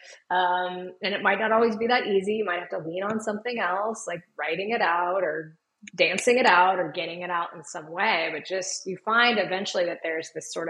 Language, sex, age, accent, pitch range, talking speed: English, female, 20-39, American, 175-225 Hz, 230 wpm